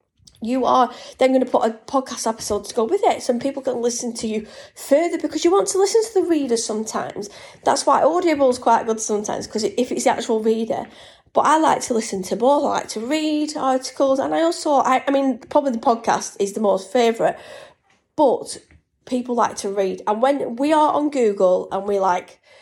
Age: 30-49